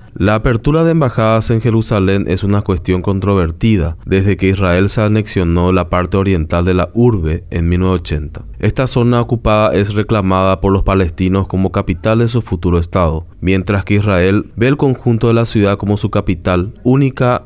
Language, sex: Spanish, male